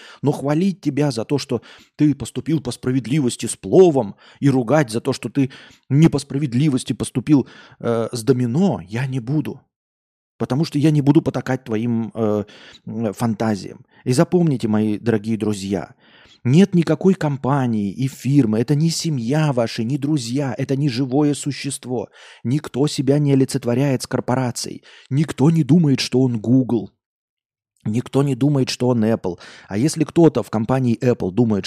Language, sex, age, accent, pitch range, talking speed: Russian, male, 20-39, native, 115-145 Hz, 155 wpm